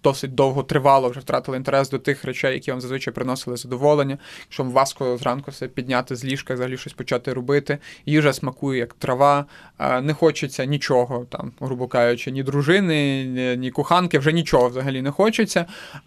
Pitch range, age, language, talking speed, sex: 125-145 Hz, 20-39, Ukrainian, 170 wpm, male